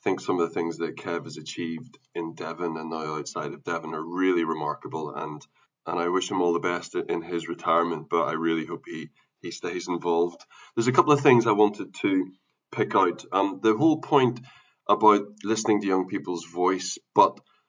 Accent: British